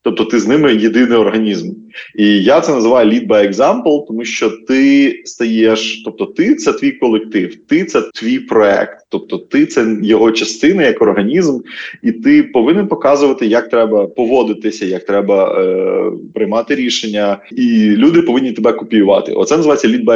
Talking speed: 160 wpm